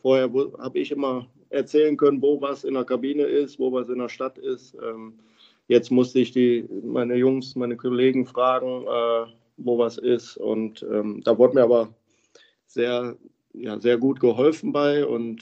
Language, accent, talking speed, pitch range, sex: German, German, 175 wpm, 120-140 Hz, male